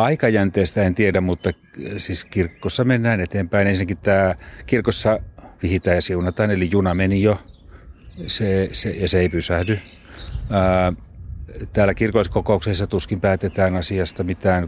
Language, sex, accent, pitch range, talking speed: Finnish, male, native, 90-105 Hz, 125 wpm